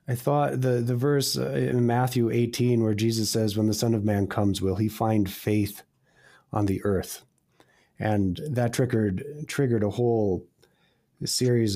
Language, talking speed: English, 160 wpm